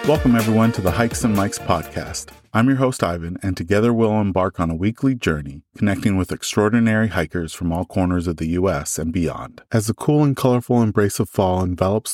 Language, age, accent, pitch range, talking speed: English, 30-49, American, 90-115 Hz, 205 wpm